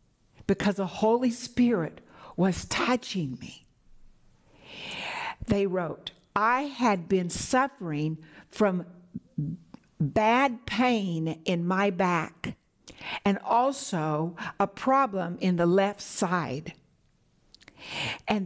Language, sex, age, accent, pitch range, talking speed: English, female, 60-79, American, 170-240 Hz, 90 wpm